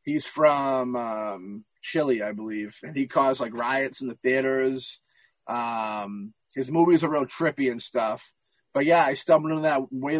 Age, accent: 30-49, American